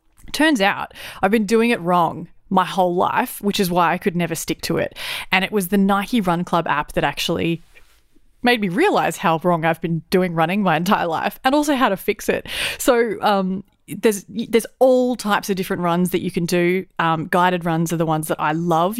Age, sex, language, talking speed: 30-49, female, English, 220 wpm